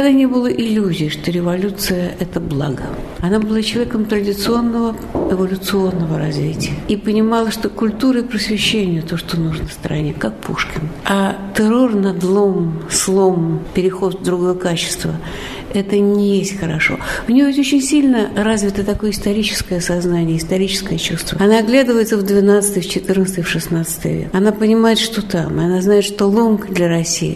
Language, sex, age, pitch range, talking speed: Russian, female, 60-79, 175-220 Hz, 150 wpm